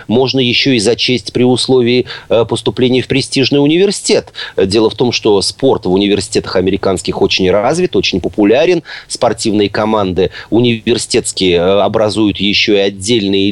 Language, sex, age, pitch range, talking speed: Russian, male, 30-49, 100-135 Hz, 130 wpm